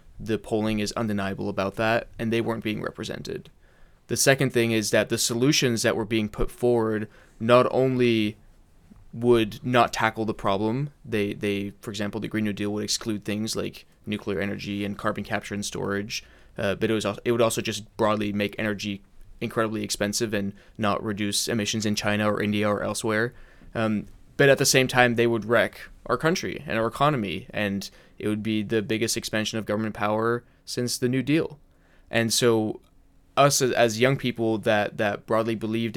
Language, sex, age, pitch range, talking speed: English, male, 20-39, 105-115 Hz, 185 wpm